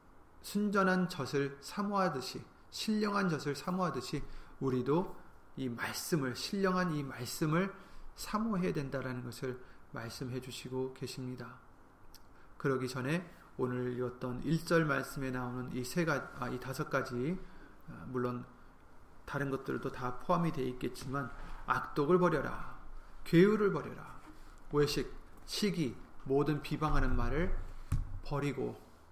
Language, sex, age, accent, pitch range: Korean, male, 40-59, native, 125-150 Hz